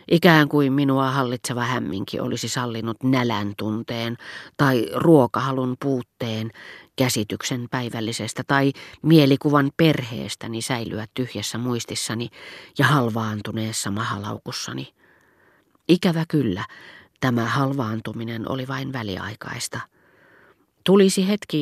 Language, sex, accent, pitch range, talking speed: Finnish, female, native, 115-140 Hz, 90 wpm